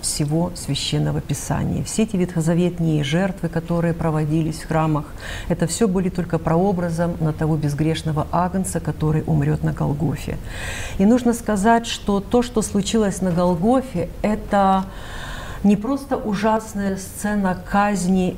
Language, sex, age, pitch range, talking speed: Russian, female, 50-69, 160-205 Hz, 125 wpm